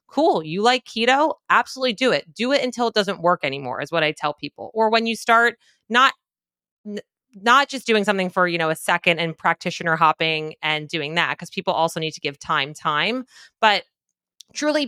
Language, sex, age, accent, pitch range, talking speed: English, female, 30-49, American, 160-210 Hz, 200 wpm